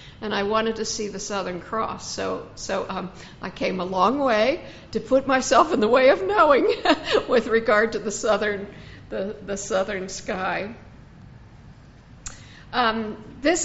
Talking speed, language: 155 wpm, English